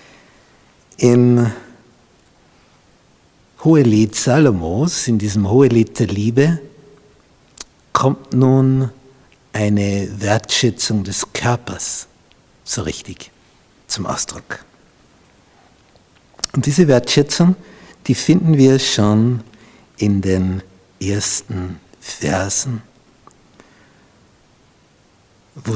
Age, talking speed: 60-79, 70 wpm